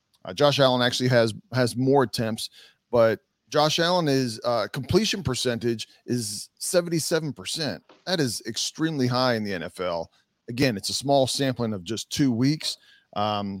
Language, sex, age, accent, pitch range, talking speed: English, male, 40-59, American, 110-130 Hz, 155 wpm